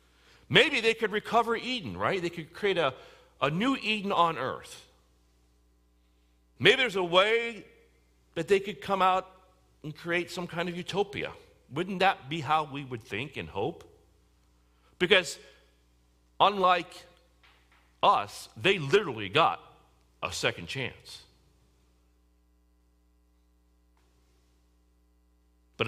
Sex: male